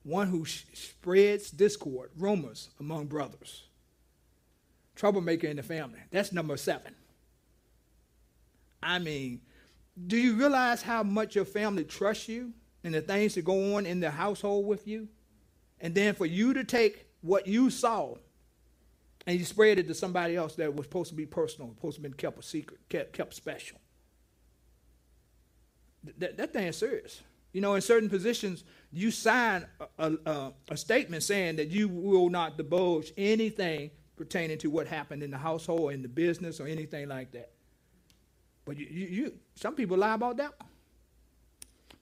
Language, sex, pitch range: English, male, 145-205 Hz